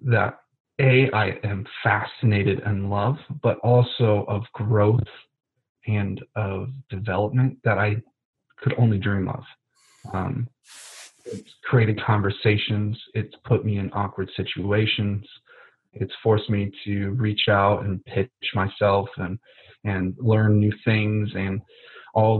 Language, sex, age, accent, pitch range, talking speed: English, male, 30-49, American, 105-125 Hz, 125 wpm